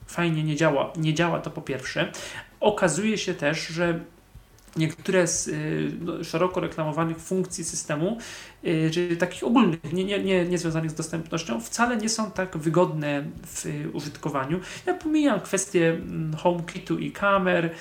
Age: 40-59